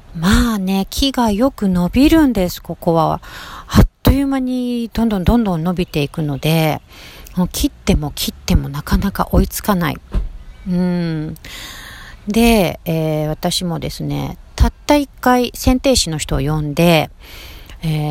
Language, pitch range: Japanese, 155-220 Hz